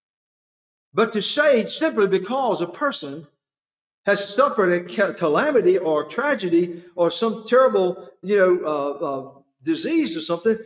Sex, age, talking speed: male, 50-69, 130 wpm